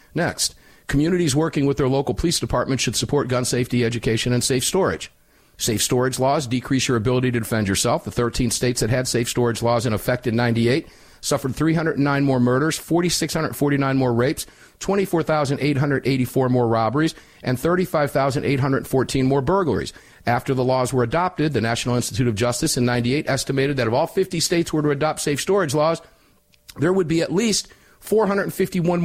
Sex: male